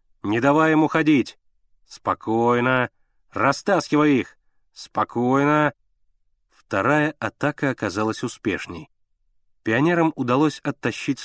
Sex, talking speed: male, 80 wpm